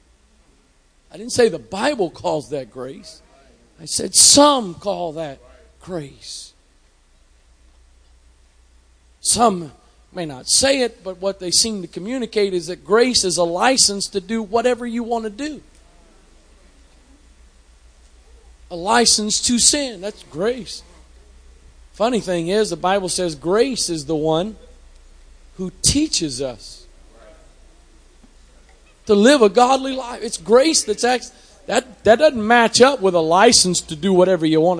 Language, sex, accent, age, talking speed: English, male, American, 40-59, 135 wpm